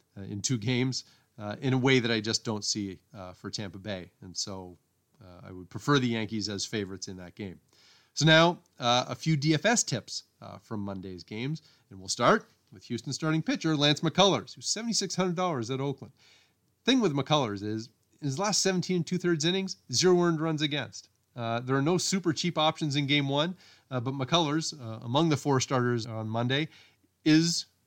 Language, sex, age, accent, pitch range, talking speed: English, male, 30-49, American, 105-140 Hz, 195 wpm